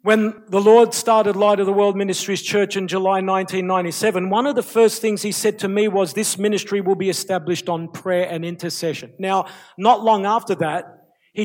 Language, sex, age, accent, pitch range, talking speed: English, male, 50-69, Australian, 175-205 Hz, 200 wpm